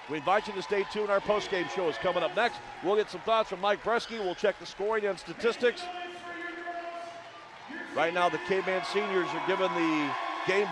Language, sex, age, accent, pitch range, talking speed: English, male, 50-69, American, 175-255 Hz, 200 wpm